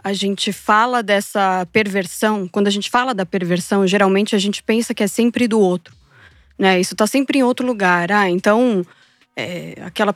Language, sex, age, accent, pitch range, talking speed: Portuguese, female, 20-39, Brazilian, 195-255 Hz, 185 wpm